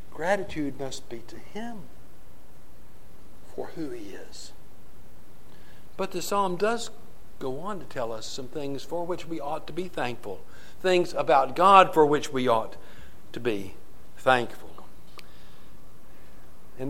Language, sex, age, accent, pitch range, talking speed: English, male, 60-79, American, 105-150 Hz, 135 wpm